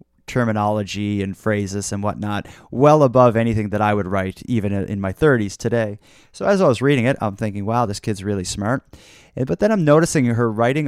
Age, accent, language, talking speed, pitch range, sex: 30-49, American, English, 200 wpm, 105-135 Hz, male